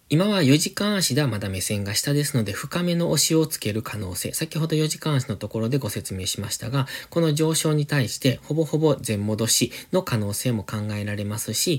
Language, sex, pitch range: Japanese, male, 110-155 Hz